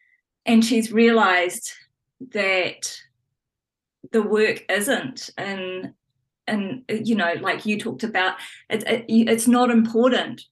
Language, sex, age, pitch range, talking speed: English, female, 20-39, 185-230 Hz, 115 wpm